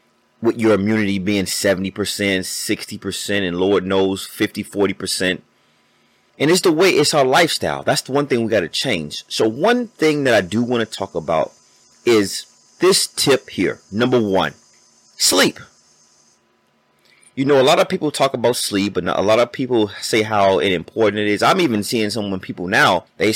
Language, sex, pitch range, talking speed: English, male, 95-145 Hz, 180 wpm